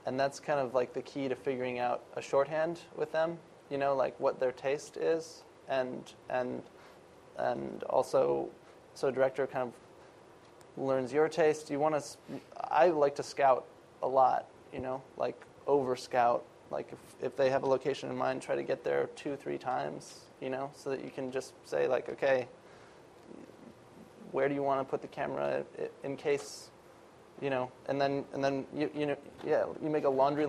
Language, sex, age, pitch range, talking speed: English, male, 20-39, 130-140 Hz, 190 wpm